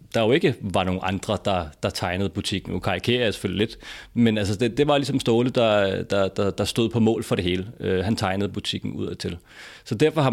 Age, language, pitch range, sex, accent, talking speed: 30-49, Danish, 95-115 Hz, male, native, 230 wpm